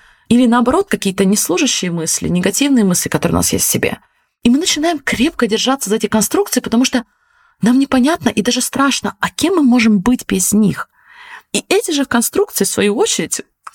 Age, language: 20-39, Russian